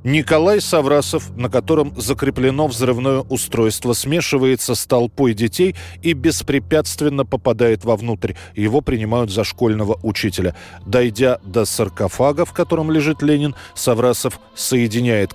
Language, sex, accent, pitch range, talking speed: Russian, male, native, 105-135 Hz, 115 wpm